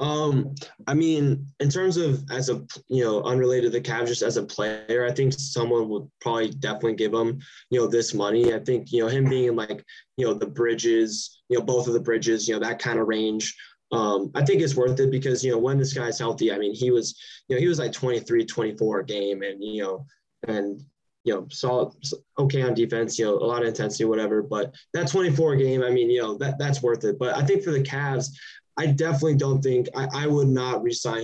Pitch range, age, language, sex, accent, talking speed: 115-140 Hz, 10-29, English, male, American, 235 wpm